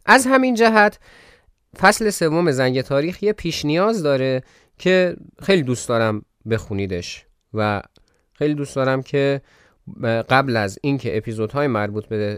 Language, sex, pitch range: Persian, male, 110-170 Hz